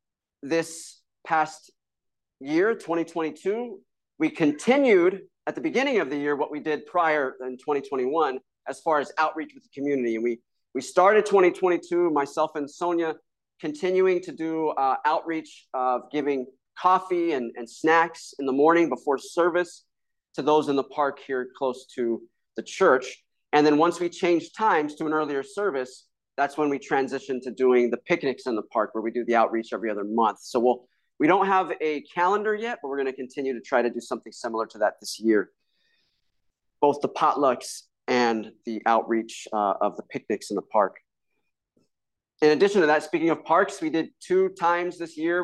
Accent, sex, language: American, male, English